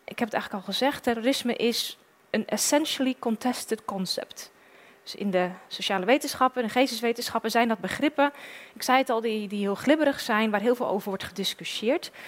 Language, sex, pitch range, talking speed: Dutch, female, 195-250 Hz, 180 wpm